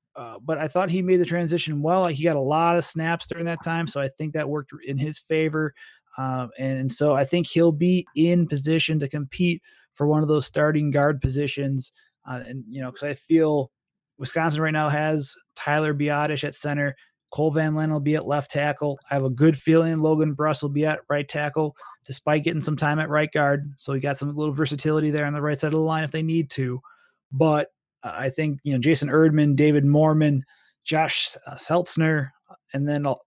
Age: 30-49